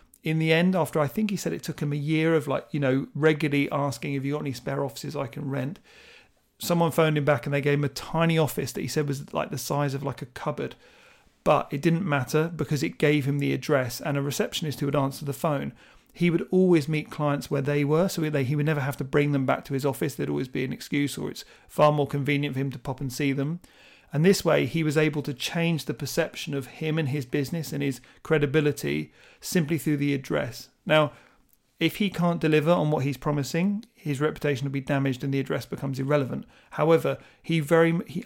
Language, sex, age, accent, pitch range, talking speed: English, male, 40-59, British, 140-165 Hz, 235 wpm